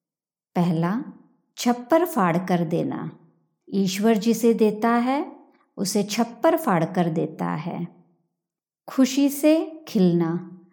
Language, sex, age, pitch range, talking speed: Hindi, male, 50-69, 180-235 Hz, 100 wpm